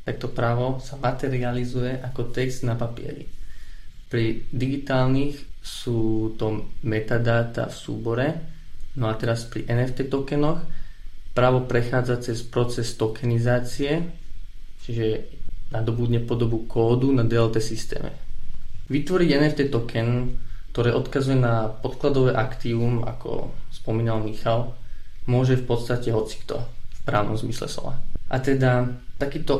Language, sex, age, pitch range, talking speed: Slovak, male, 20-39, 110-130 Hz, 110 wpm